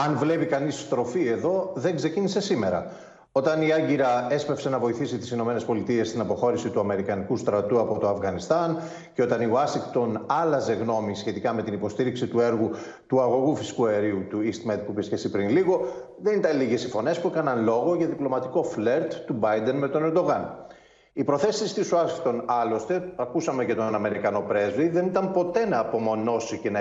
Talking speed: 180 wpm